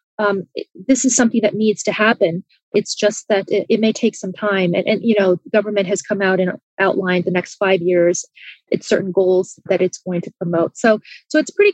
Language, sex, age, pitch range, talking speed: English, female, 30-49, 185-225 Hz, 225 wpm